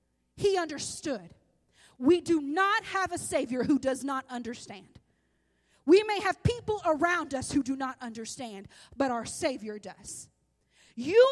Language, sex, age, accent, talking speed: English, female, 30-49, American, 145 wpm